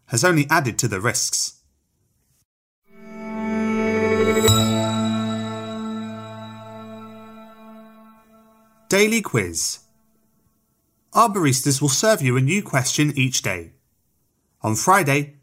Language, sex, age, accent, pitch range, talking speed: English, male, 30-49, British, 115-175 Hz, 80 wpm